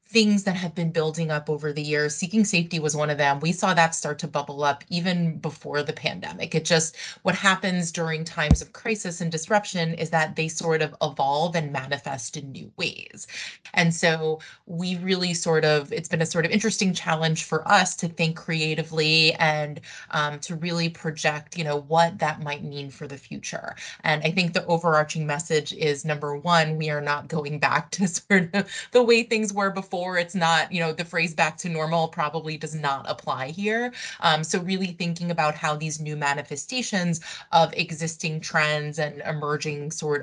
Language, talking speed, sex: English, 195 wpm, female